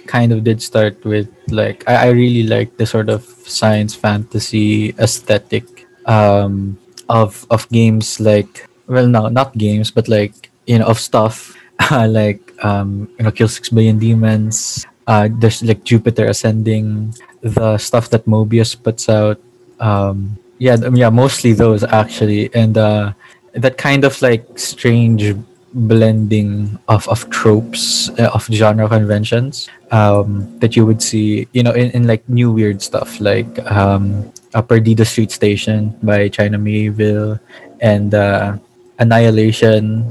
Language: English